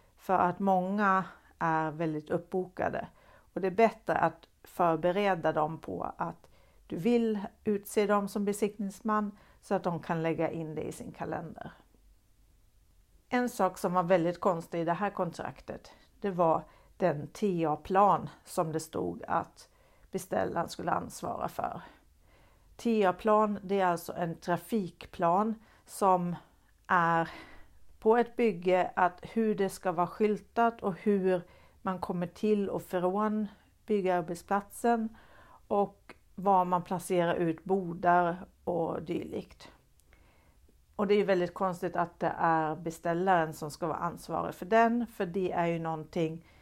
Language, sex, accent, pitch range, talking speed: Swedish, female, native, 165-200 Hz, 140 wpm